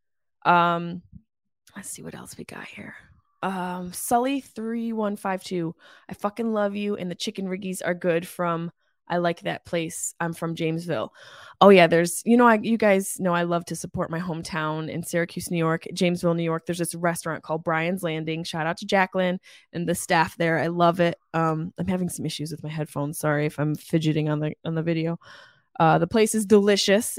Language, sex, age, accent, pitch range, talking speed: English, female, 20-39, American, 165-205 Hz, 200 wpm